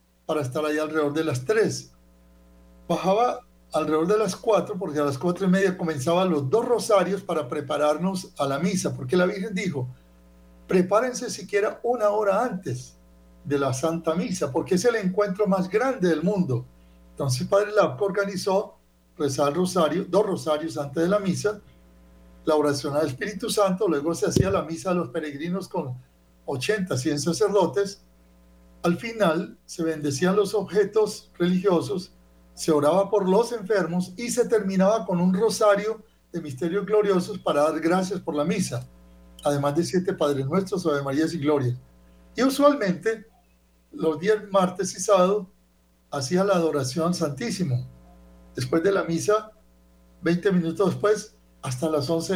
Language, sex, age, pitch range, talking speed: Spanish, male, 60-79, 135-200 Hz, 155 wpm